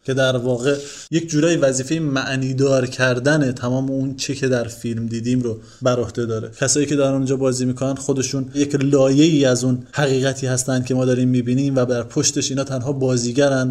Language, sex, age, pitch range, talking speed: Persian, male, 20-39, 125-145 Hz, 185 wpm